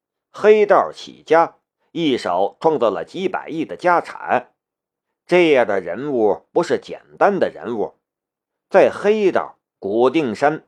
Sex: male